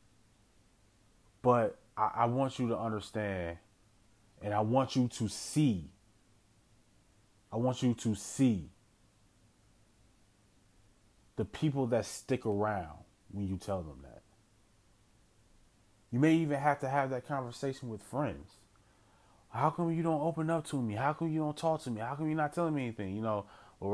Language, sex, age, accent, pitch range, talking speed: English, male, 30-49, American, 105-125 Hz, 160 wpm